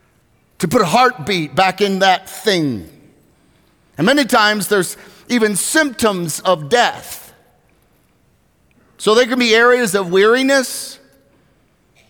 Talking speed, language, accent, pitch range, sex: 115 wpm, English, American, 155-215 Hz, male